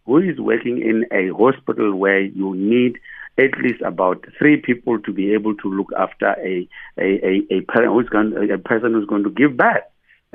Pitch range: 100-150 Hz